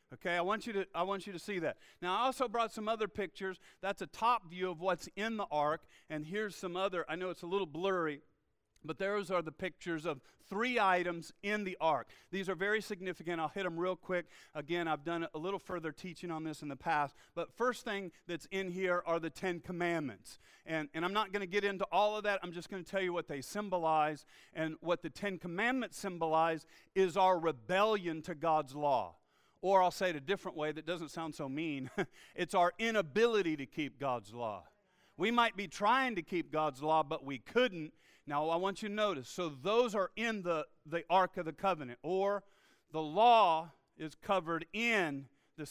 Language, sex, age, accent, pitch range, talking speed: English, male, 40-59, American, 155-195 Hz, 215 wpm